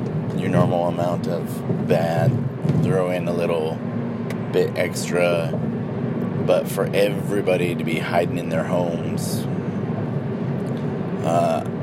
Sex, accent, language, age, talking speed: male, American, English, 30-49, 105 wpm